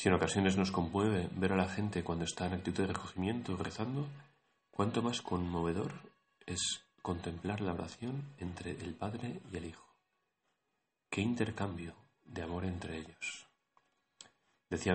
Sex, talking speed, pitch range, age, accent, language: male, 145 wpm, 85-105 Hz, 30-49, Spanish, Spanish